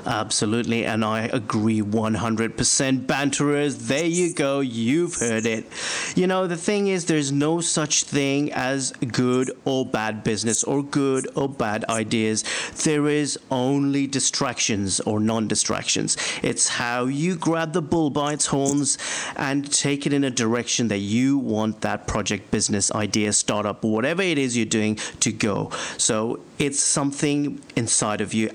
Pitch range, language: 110-150 Hz, English